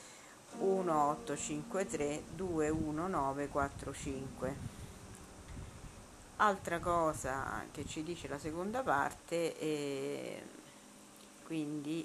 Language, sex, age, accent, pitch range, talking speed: Italian, female, 50-69, native, 140-175 Hz, 60 wpm